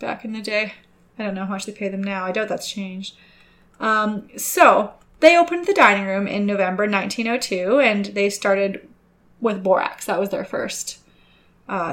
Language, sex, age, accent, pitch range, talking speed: English, female, 20-39, American, 195-225 Hz, 185 wpm